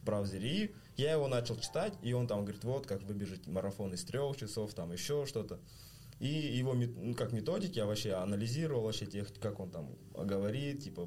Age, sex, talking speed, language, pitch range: 20-39, male, 180 wpm, Russian, 100-125 Hz